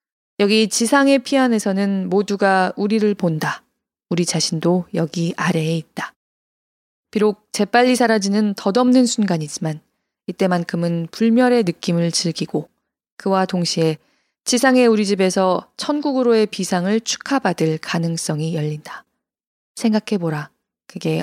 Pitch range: 170-225 Hz